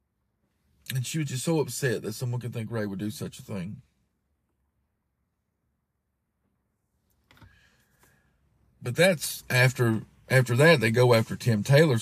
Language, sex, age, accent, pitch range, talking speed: English, male, 50-69, American, 105-140 Hz, 130 wpm